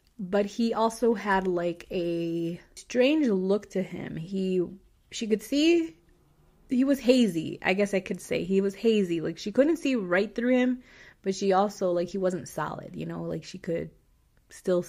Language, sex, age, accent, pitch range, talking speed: English, female, 20-39, American, 175-220 Hz, 180 wpm